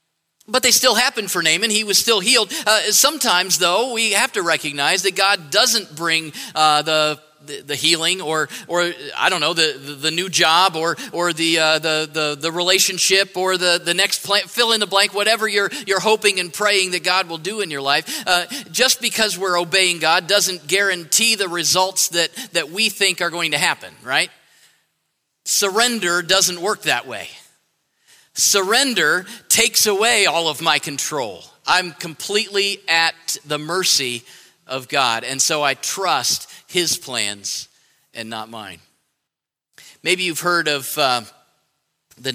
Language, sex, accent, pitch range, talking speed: English, male, American, 150-190 Hz, 160 wpm